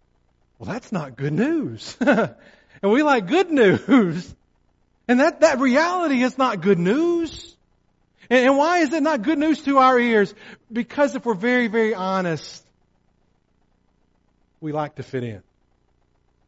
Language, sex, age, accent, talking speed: English, male, 50-69, American, 145 wpm